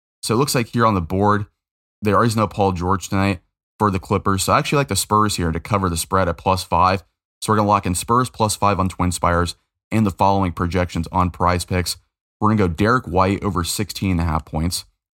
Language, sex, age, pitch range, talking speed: English, male, 20-39, 85-100 Hz, 245 wpm